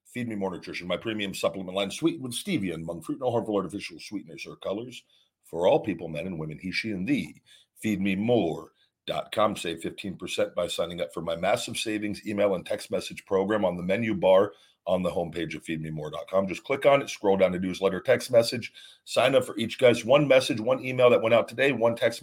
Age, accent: 50-69, American